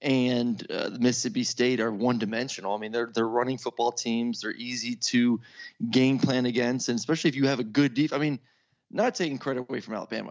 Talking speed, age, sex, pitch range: 205 wpm, 20-39, male, 115-135 Hz